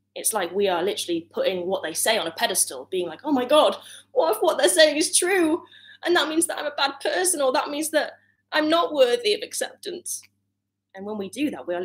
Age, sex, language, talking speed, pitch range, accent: 20-39, female, English, 245 wpm, 160-255 Hz, British